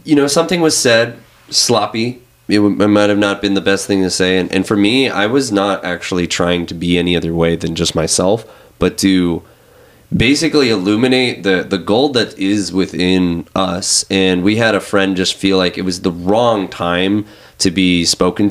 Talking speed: 195 wpm